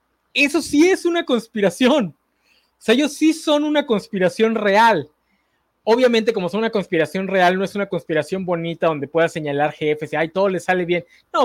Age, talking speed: 20-39, 180 wpm